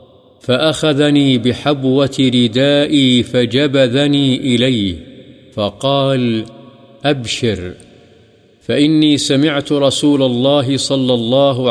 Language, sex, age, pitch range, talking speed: Urdu, male, 50-69, 115-135 Hz, 65 wpm